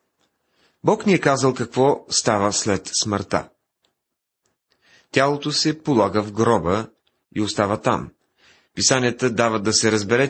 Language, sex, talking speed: Bulgarian, male, 120 wpm